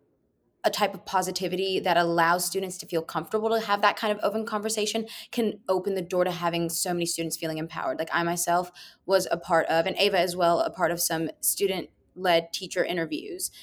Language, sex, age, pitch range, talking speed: English, female, 20-39, 170-195 Hz, 205 wpm